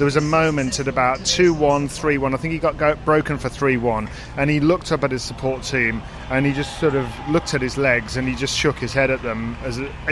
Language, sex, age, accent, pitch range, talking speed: English, male, 30-49, British, 130-150 Hz, 255 wpm